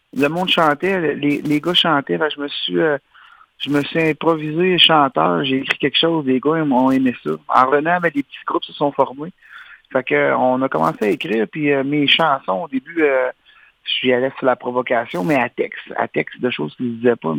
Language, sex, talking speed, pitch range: French, male, 230 wpm, 125-150 Hz